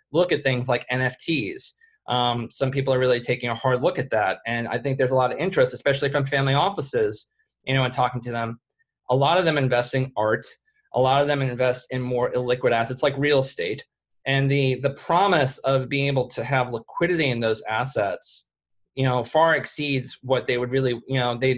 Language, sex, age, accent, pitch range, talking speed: English, male, 20-39, American, 130-155 Hz, 210 wpm